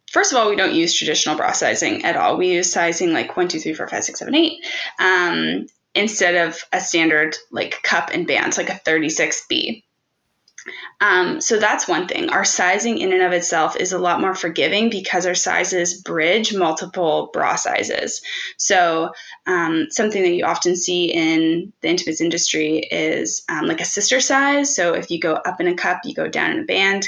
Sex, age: female, 20-39